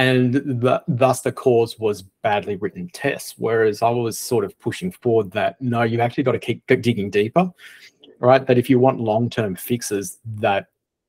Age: 30-49